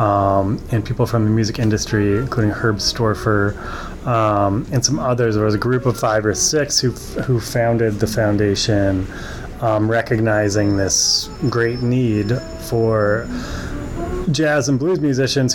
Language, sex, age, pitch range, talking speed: English, male, 30-49, 100-125 Hz, 145 wpm